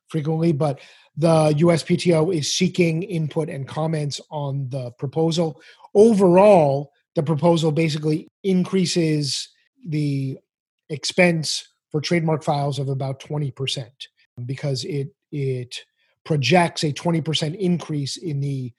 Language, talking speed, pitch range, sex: English, 110 wpm, 145-175 Hz, male